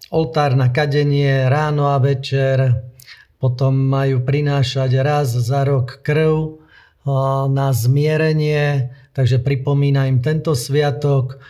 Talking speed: 105 wpm